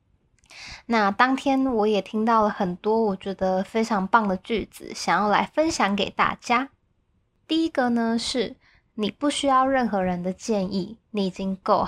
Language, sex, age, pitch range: Chinese, female, 20-39, 195-235 Hz